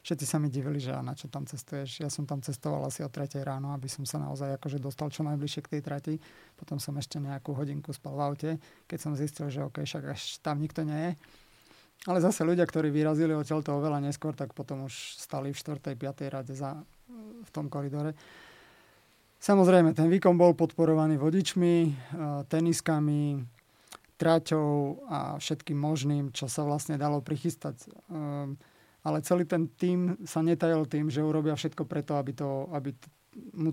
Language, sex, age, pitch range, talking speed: Slovak, male, 30-49, 140-160 Hz, 180 wpm